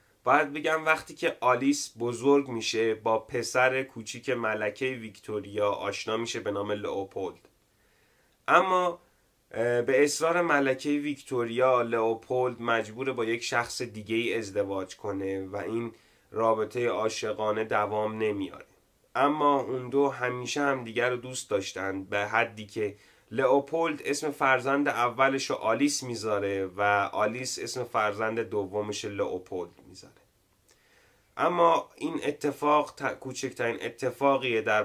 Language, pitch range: Persian, 105-135 Hz